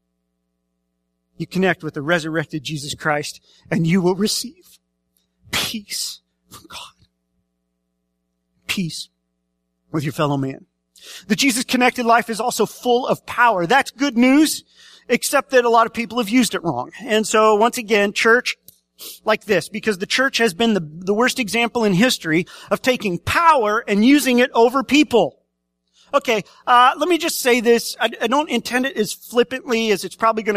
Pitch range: 150-240 Hz